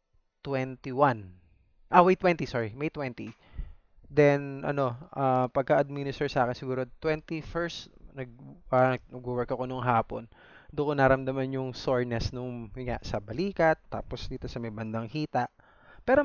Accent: native